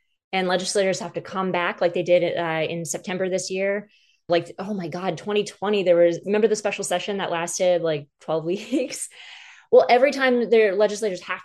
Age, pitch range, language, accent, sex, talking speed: 20-39, 170-205 Hz, English, American, female, 190 wpm